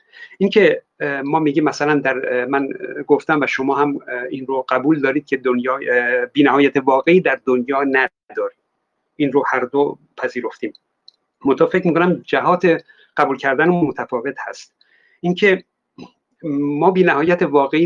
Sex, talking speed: male, 130 wpm